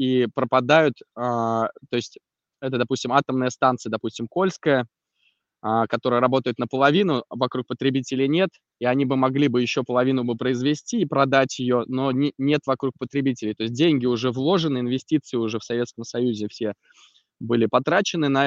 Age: 20-39